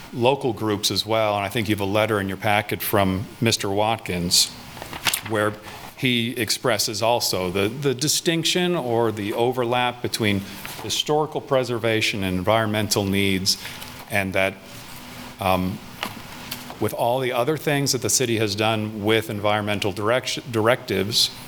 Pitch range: 100-120 Hz